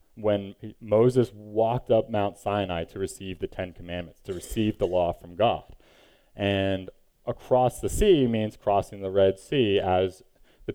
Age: 20-39